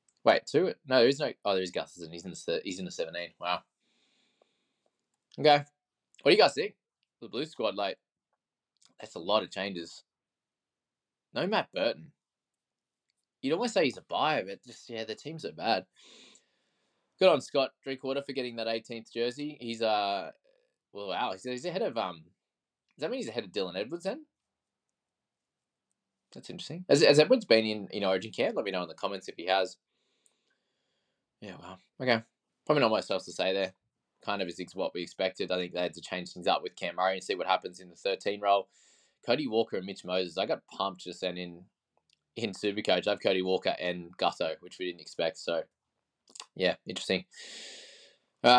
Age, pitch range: 20-39, 90-125 Hz